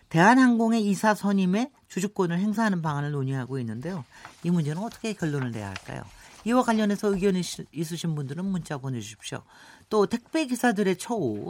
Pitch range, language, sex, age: 145-215 Hz, Korean, male, 40-59